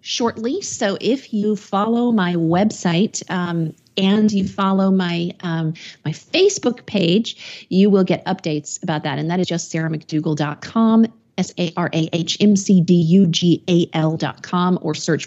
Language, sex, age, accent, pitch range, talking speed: English, female, 40-59, American, 160-205 Hz, 165 wpm